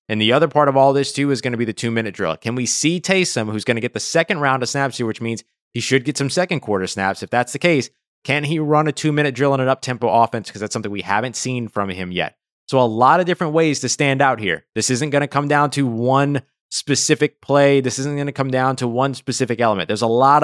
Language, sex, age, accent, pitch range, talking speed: English, male, 20-39, American, 105-140 Hz, 275 wpm